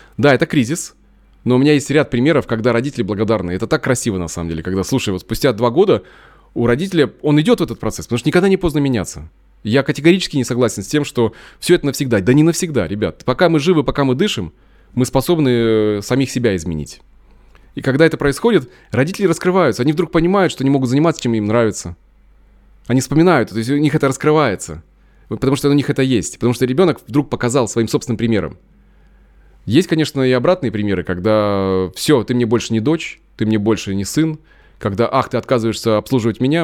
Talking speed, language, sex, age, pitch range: 200 wpm, Russian, male, 20-39, 110-150 Hz